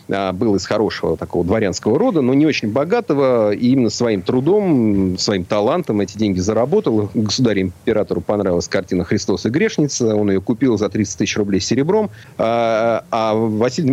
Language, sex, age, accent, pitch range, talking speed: Russian, male, 40-59, native, 100-130 Hz, 150 wpm